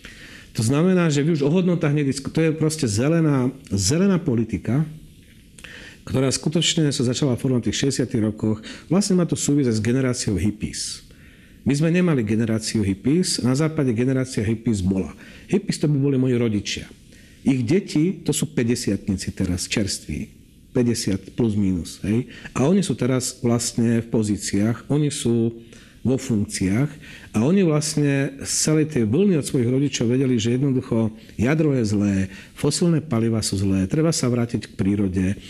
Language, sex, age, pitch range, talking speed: Slovak, male, 50-69, 105-145 Hz, 155 wpm